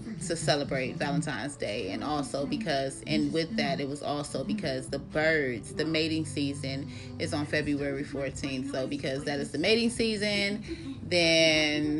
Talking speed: 155 wpm